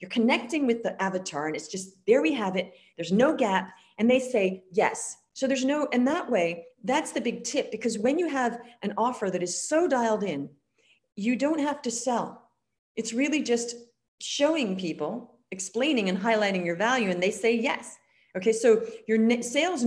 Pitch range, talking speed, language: 195-260 Hz, 190 wpm, English